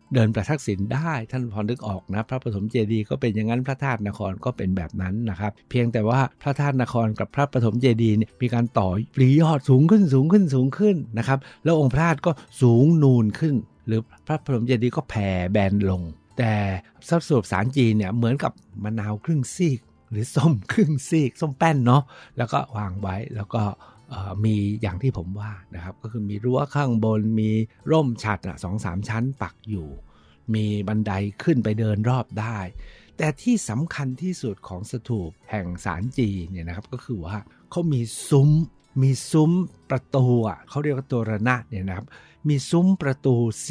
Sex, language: male, Thai